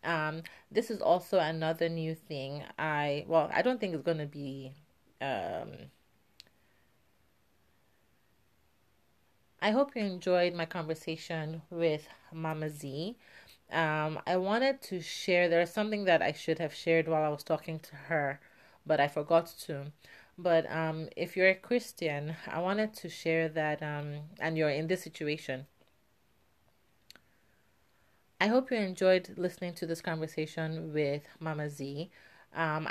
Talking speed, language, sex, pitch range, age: 140 wpm, English, female, 150-170 Hz, 30-49